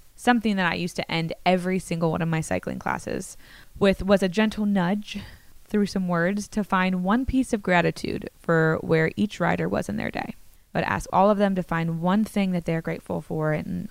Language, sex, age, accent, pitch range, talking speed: English, female, 20-39, American, 170-210 Hz, 210 wpm